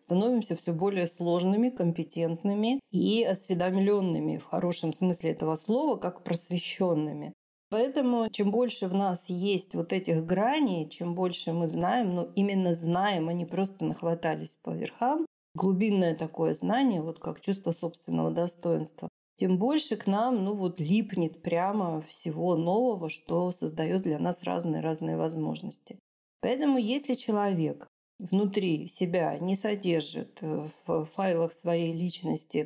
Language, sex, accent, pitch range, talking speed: Russian, female, native, 165-205 Hz, 130 wpm